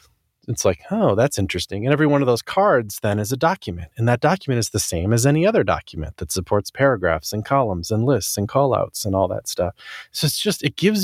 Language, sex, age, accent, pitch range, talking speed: English, male, 30-49, American, 100-140 Hz, 240 wpm